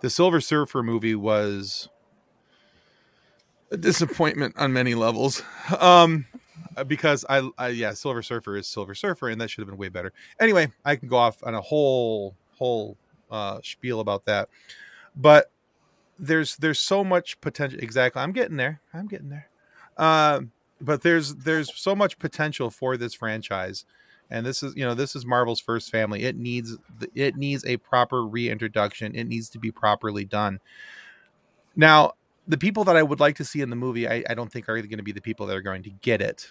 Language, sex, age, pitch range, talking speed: English, male, 30-49, 110-145 Hz, 190 wpm